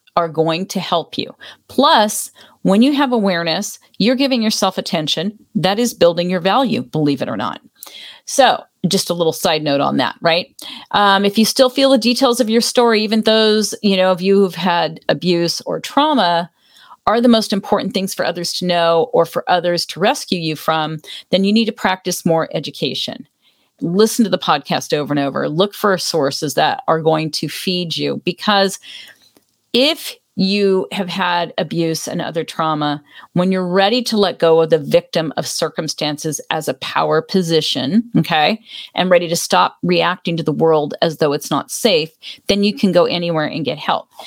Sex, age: female, 40-59